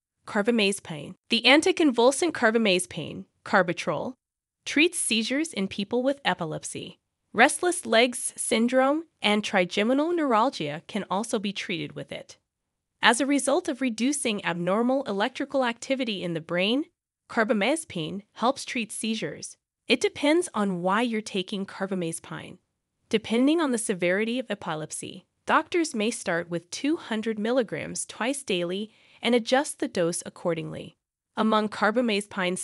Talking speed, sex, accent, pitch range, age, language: 120 wpm, female, American, 185-265 Hz, 20-39, English